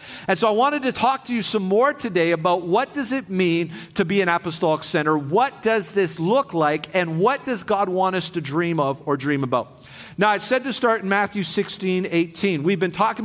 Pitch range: 170-210 Hz